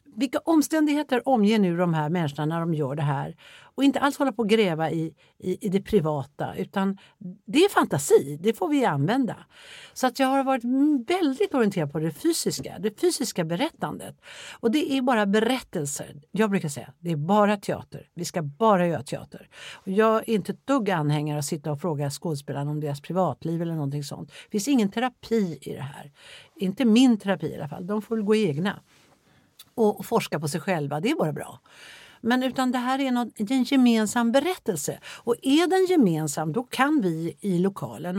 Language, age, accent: Swedish, 60-79, native